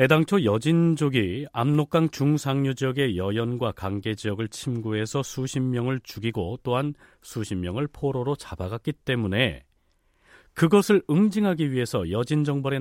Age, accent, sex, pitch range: 40-59, native, male, 110-165 Hz